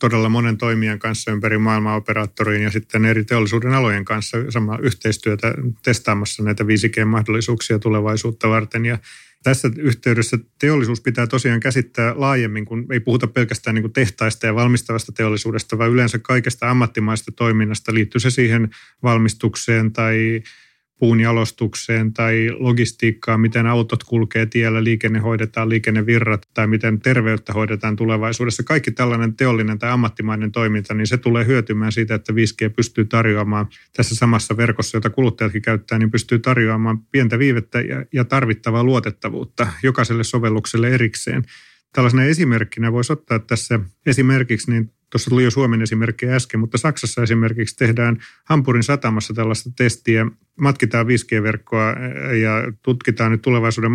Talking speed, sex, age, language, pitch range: 135 wpm, male, 30-49, Finnish, 110-125 Hz